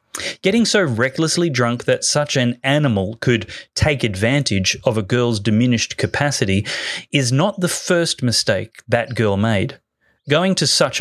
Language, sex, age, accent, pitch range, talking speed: English, male, 30-49, Australian, 110-150 Hz, 145 wpm